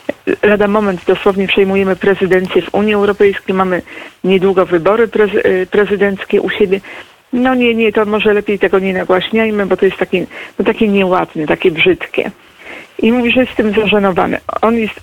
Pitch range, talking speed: 180-210 Hz, 165 wpm